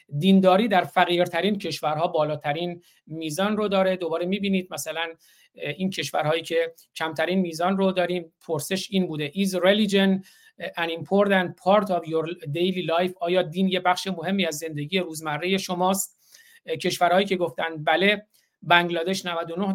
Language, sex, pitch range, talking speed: Persian, male, 165-190 Hz, 135 wpm